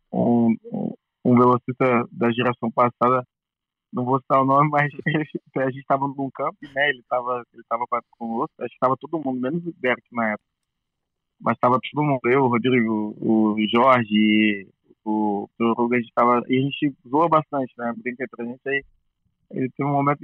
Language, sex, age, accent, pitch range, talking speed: Portuguese, male, 20-39, Brazilian, 130-165 Hz, 195 wpm